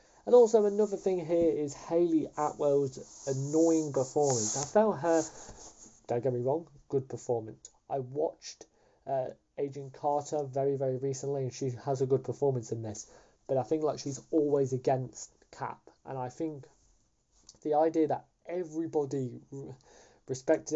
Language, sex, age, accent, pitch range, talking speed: English, male, 20-39, British, 130-155 Hz, 145 wpm